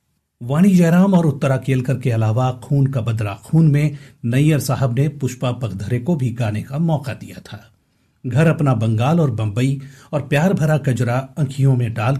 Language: Hindi